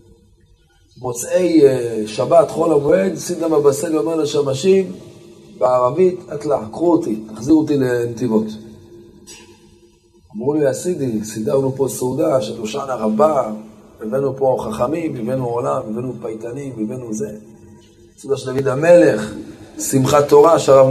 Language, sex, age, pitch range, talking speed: Hebrew, male, 30-49, 110-145 Hz, 110 wpm